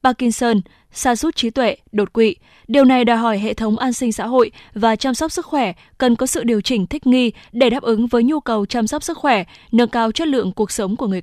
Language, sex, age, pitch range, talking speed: Vietnamese, female, 10-29, 210-260 Hz, 250 wpm